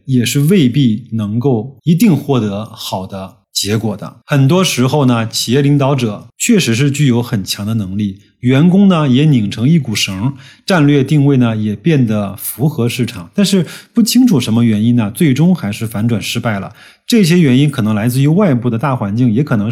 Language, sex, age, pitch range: Chinese, male, 20-39, 110-145 Hz